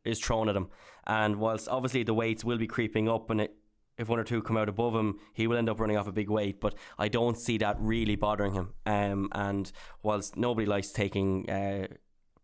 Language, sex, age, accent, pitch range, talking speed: English, male, 10-29, Irish, 105-120 Hz, 225 wpm